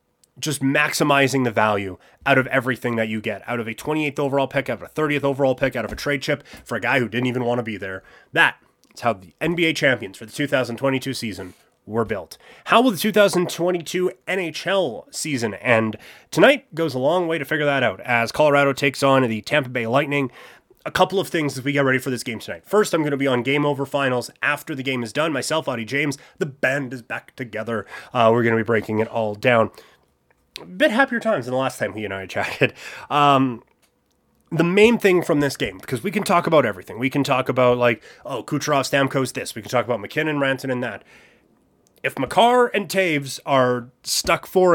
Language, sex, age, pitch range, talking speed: English, male, 30-49, 120-155 Hz, 220 wpm